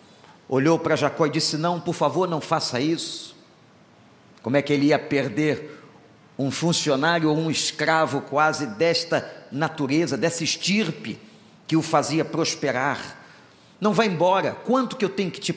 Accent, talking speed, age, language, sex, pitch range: Brazilian, 155 wpm, 50-69, Portuguese, male, 150-210 Hz